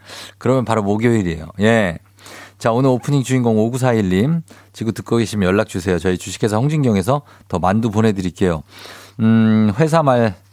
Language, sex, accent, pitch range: Korean, male, native, 100-140 Hz